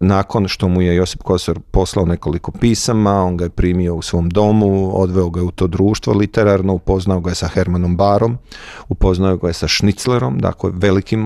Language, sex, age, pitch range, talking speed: Croatian, male, 40-59, 95-120 Hz, 185 wpm